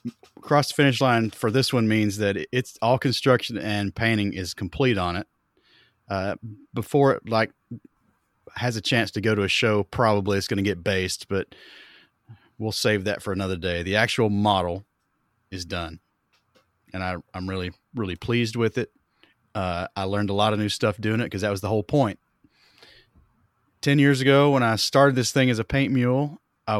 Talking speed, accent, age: 190 wpm, American, 30-49